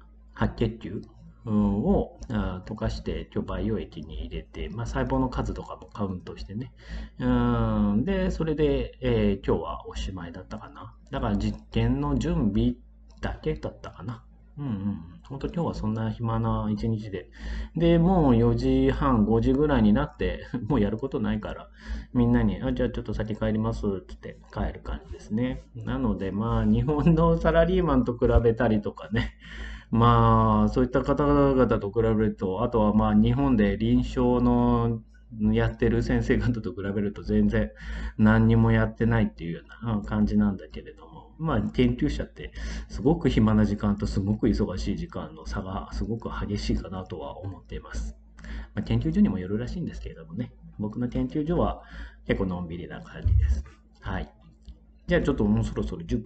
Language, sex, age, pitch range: Japanese, male, 30-49, 100-125 Hz